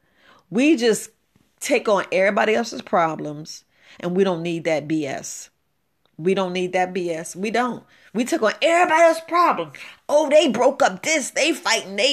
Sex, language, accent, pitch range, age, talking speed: female, English, American, 185-255 Hz, 40-59, 170 wpm